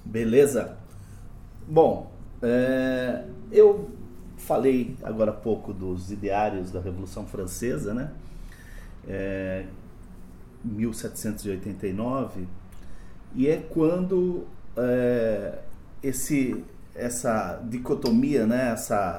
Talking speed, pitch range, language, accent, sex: 65 wpm, 110-160 Hz, Portuguese, Brazilian, male